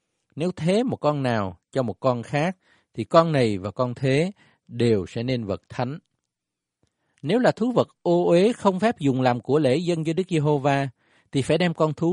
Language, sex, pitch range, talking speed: Vietnamese, male, 115-165 Hz, 205 wpm